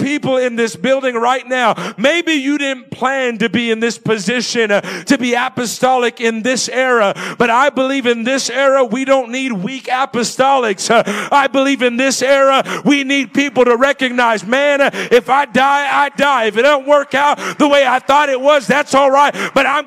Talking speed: 200 wpm